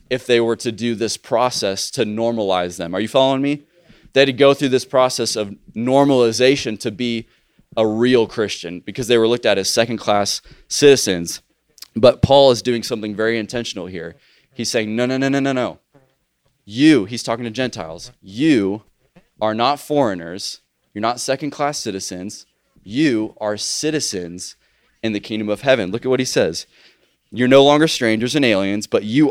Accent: American